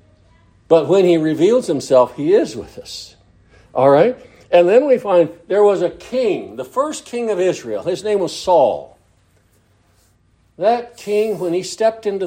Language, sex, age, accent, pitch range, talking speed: English, male, 60-79, American, 170-240 Hz, 165 wpm